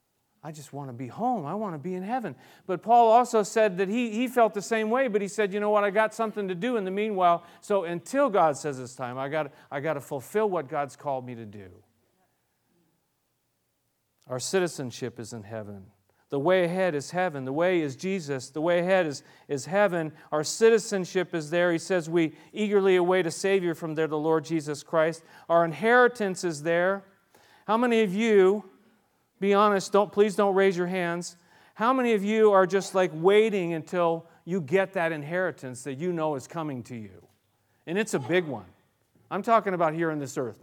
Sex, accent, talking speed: male, American, 205 wpm